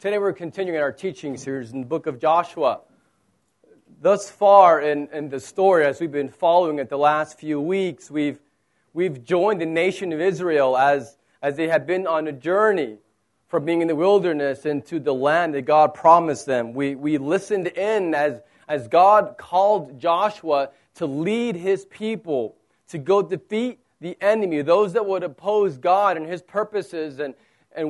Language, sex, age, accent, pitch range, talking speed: English, male, 30-49, American, 150-205 Hz, 175 wpm